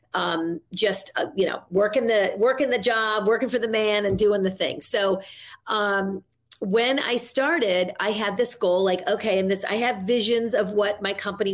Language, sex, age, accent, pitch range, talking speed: English, female, 40-59, American, 185-225 Hz, 200 wpm